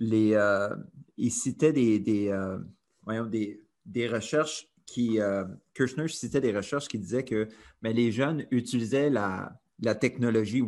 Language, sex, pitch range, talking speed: French, male, 105-130 Hz, 145 wpm